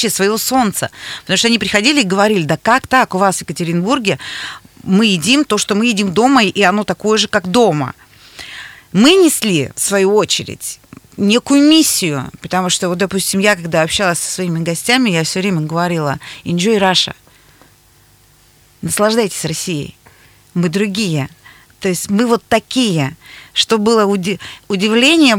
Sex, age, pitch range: female, 30-49, 165-210 Hz